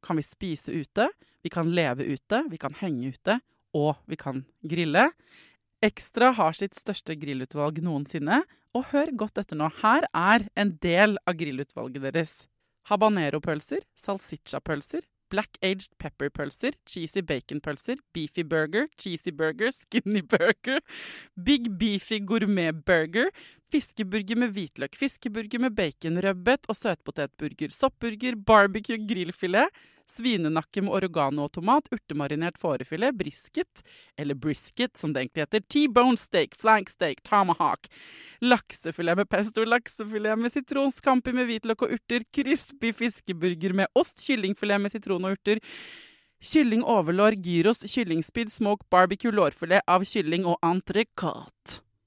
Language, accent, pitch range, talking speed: English, Swedish, 160-235 Hz, 125 wpm